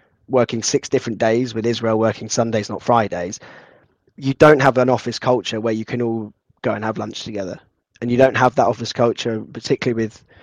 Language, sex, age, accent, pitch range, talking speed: English, male, 10-29, British, 115-135 Hz, 195 wpm